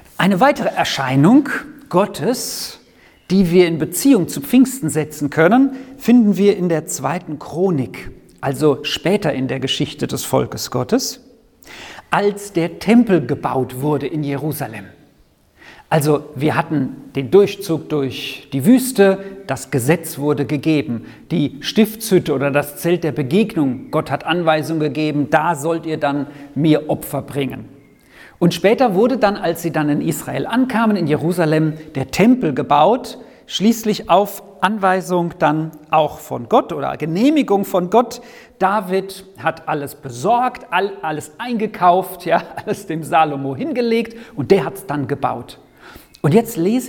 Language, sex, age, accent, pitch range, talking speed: German, male, 50-69, German, 145-200 Hz, 140 wpm